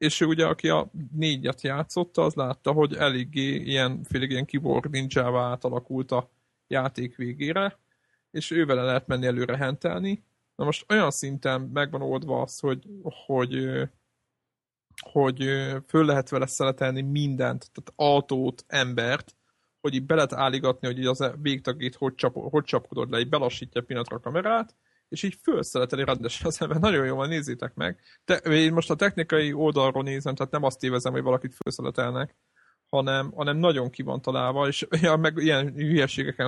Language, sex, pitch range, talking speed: Hungarian, male, 130-155 Hz, 155 wpm